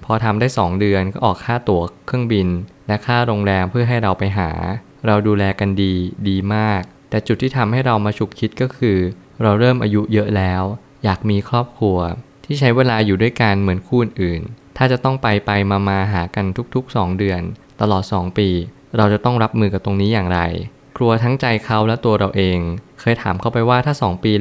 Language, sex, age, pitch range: Thai, male, 20-39, 95-120 Hz